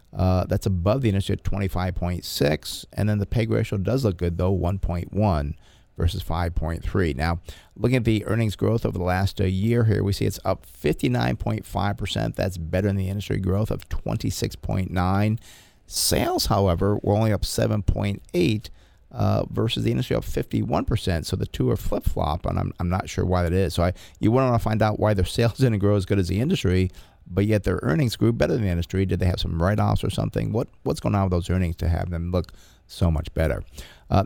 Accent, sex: American, male